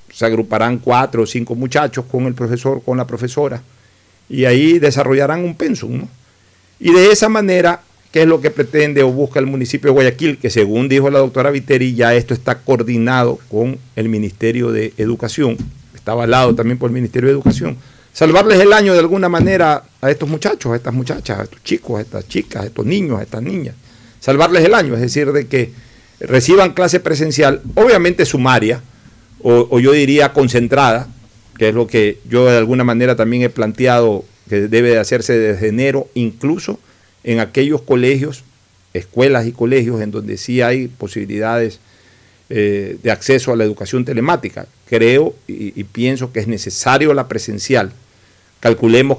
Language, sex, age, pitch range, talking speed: Spanish, male, 50-69, 110-135 Hz, 175 wpm